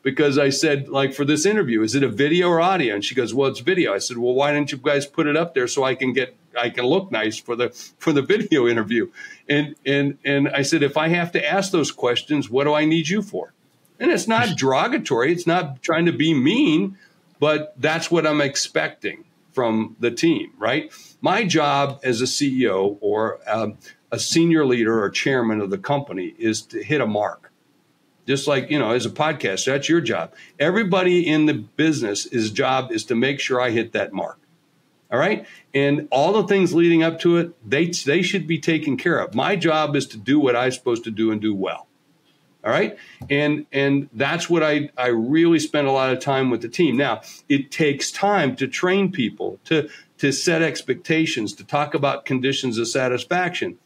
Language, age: English, 60-79